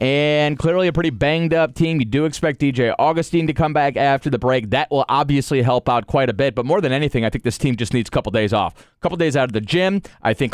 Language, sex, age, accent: English, male, 30-49, American